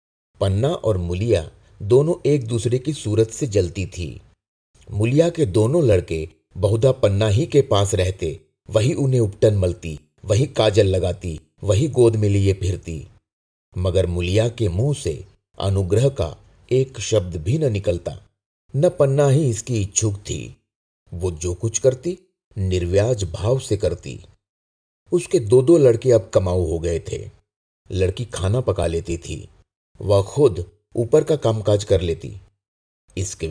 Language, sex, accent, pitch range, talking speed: Hindi, male, native, 90-120 Hz, 145 wpm